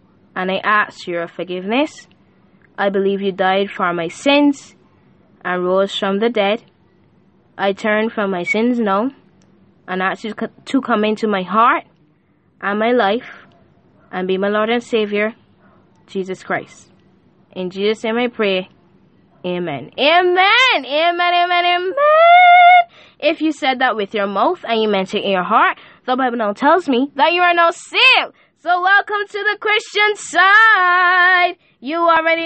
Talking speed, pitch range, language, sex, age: 155 wpm, 220-350 Hz, English, female, 10-29